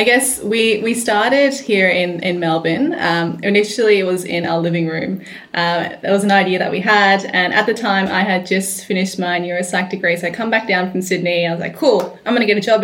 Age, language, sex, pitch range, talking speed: 20-39, English, female, 180-205 Hz, 250 wpm